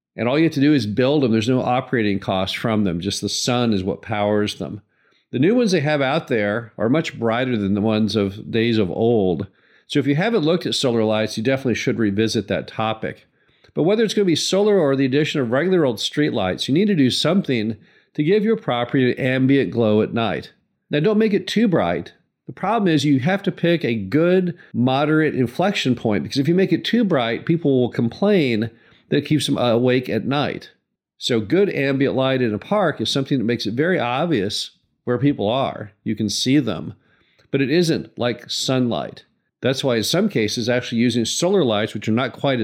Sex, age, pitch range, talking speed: male, 50-69, 110-150 Hz, 220 wpm